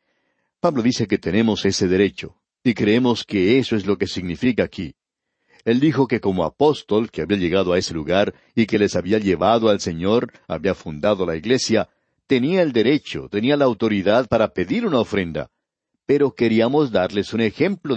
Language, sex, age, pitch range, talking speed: Spanish, male, 60-79, 100-130 Hz, 175 wpm